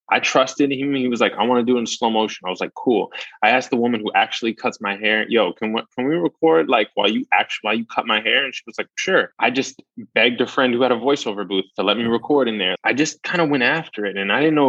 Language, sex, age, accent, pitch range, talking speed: English, male, 20-39, American, 95-130 Hz, 305 wpm